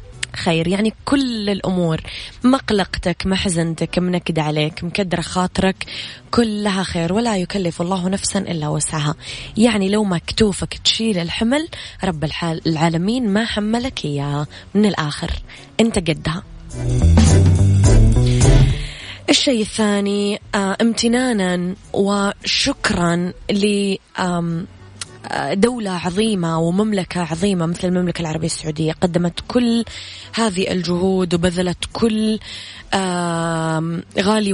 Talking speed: 95 wpm